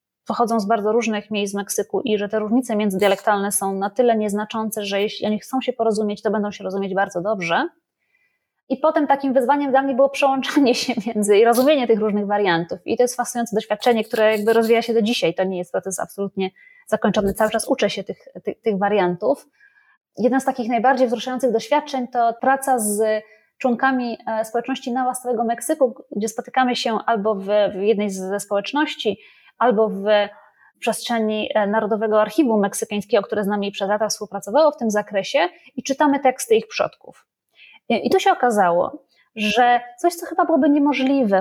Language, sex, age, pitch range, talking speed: Polish, female, 20-39, 210-260 Hz, 175 wpm